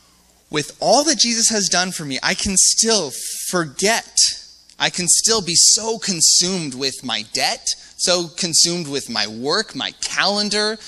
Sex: male